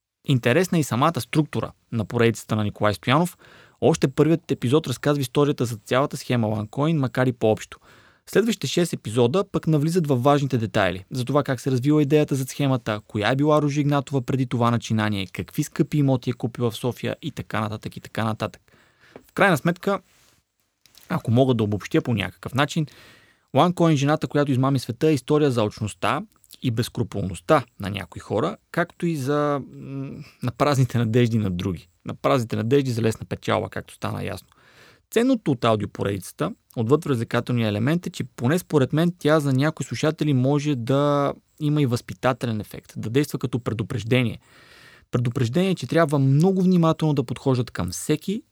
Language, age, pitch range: Bulgarian, 20-39, 115-150 Hz